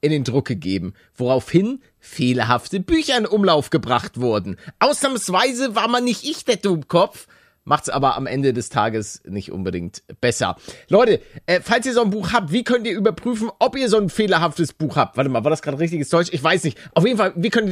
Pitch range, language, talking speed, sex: 140-210 Hz, German, 205 wpm, male